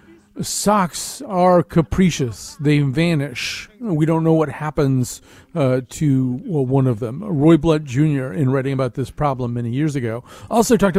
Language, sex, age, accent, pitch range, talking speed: English, male, 40-59, American, 130-175 Hz, 155 wpm